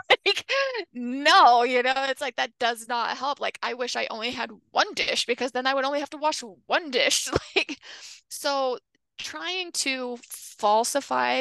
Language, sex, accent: English, female, American